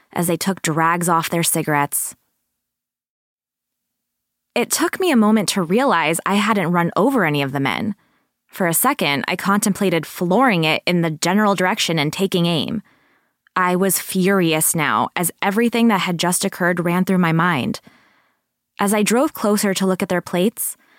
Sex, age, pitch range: female, 20-39, 170-215 Hz